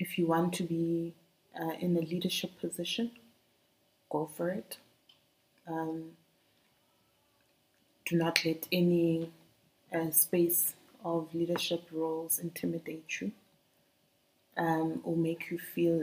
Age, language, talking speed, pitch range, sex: 20-39, English, 110 wpm, 165-175 Hz, female